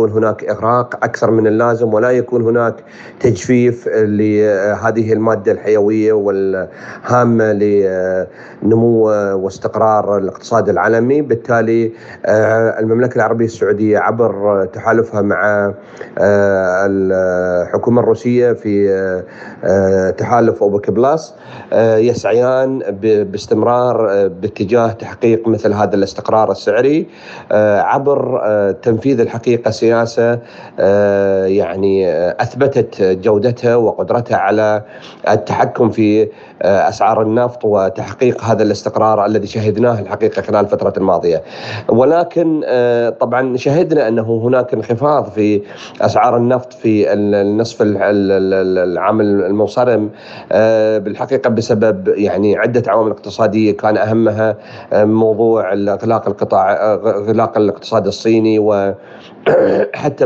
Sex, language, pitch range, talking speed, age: male, Arabic, 105-115 Hz, 90 wpm, 40-59